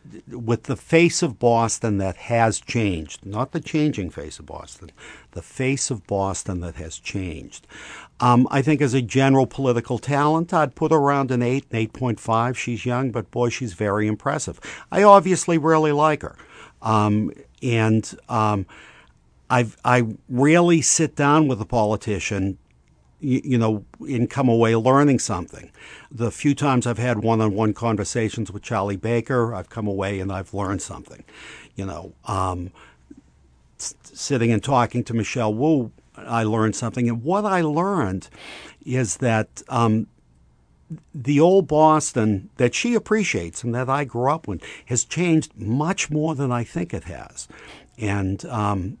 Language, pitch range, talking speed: English, 105-140 Hz, 155 wpm